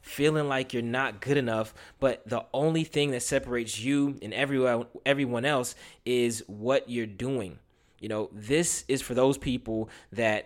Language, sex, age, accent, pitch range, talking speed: English, male, 20-39, American, 110-130 Hz, 165 wpm